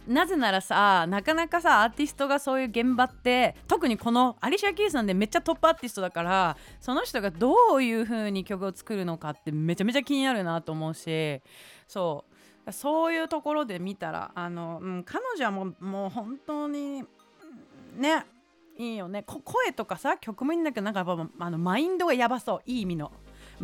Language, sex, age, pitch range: Japanese, female, 30-49, 175-270 Hz